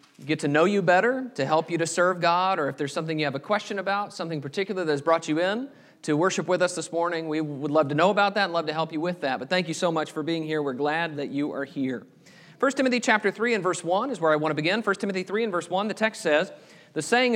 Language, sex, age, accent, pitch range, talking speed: English, male, 40-59, American, 155-205 Hz, 295 wpm